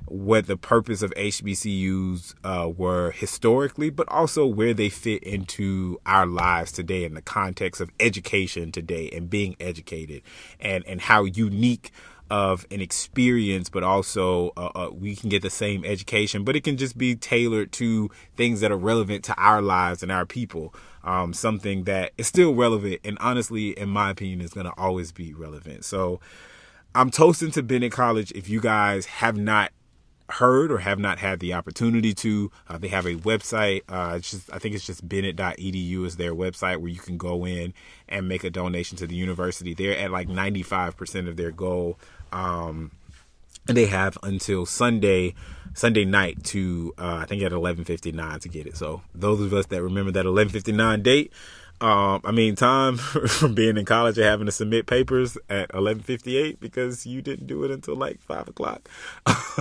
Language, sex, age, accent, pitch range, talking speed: English, male, 30-49, American, 90-110 Hz, 185 wpm